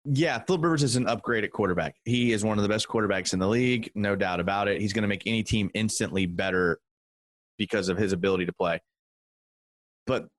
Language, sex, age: English, male, 30-49